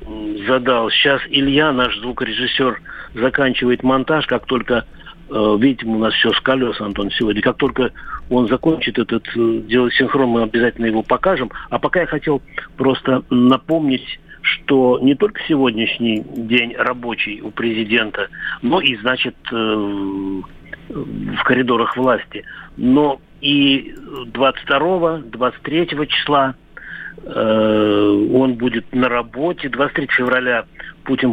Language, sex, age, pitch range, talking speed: Russian, male, 50-69, 115-140 Hz, 115 wpm